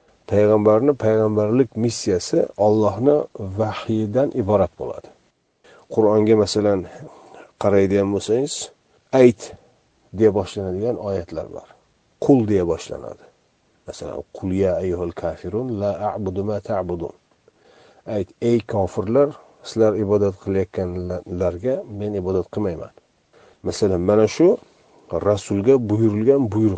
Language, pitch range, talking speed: Russian, 100-120 Hz, 70 wpm